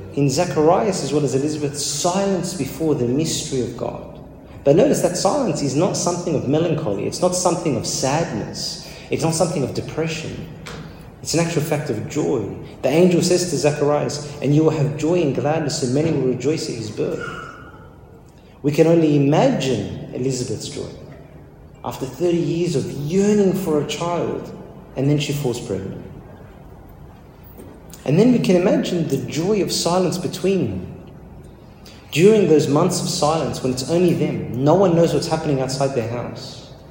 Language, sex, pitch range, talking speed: English, male, 135-170 Hz, 165 wpm